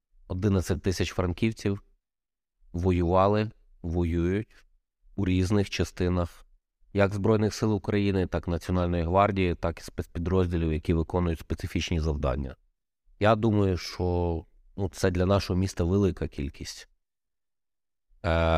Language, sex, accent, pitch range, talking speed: Ukrainian, male, native, 80-100 Hz, 110 wpm